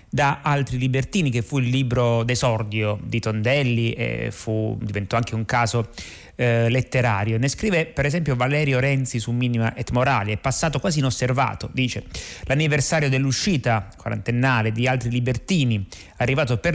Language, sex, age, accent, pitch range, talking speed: Italian, male, 30-49, native, 115-135 Hz, 145 wpm